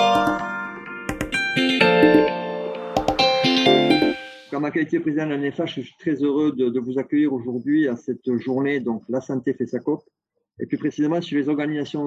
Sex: male